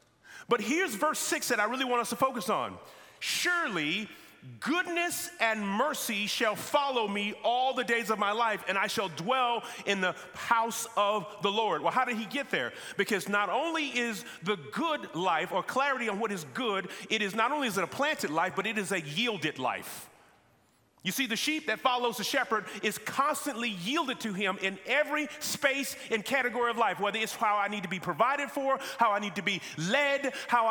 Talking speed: 205 wpm